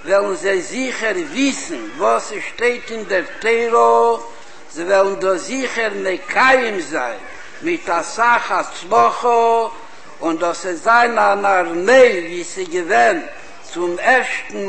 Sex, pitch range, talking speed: male, 195-260 Hz, 115 wpm